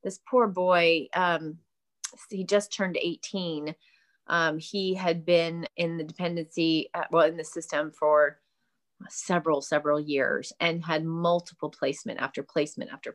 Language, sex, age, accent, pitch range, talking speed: English, female, 30-49, American, 155-180 Hz, 135 wpm